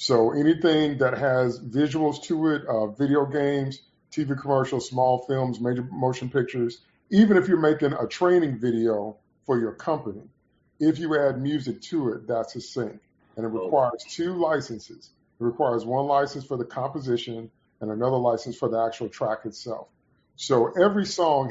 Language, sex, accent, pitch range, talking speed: English, male, American, 120-150 Hz, 165 wpm